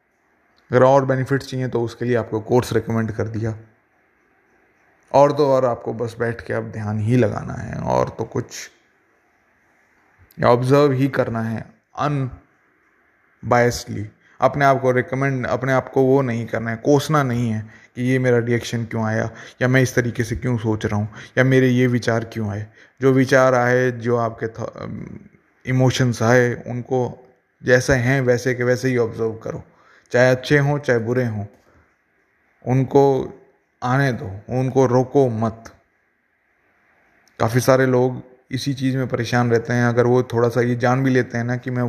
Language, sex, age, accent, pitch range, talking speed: Hindi, male, 20-39, native, 115-130 Hz, 165 wpm